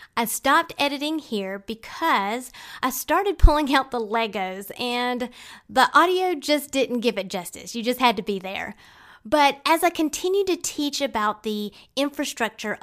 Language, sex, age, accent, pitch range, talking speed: English, female, 30-49, American, 215-305 Hz, 160 wpm